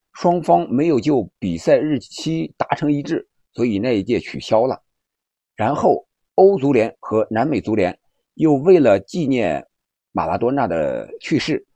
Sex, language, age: male, Chinese, 50-69